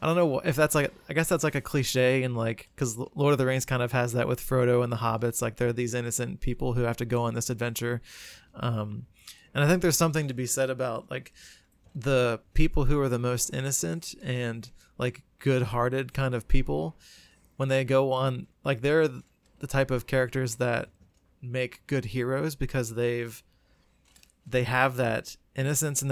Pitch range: 115-135 Hz